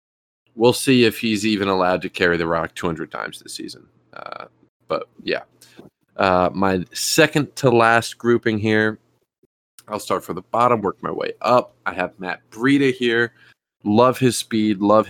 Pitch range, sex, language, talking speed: 90-115 Hz, male, English, 160 wpm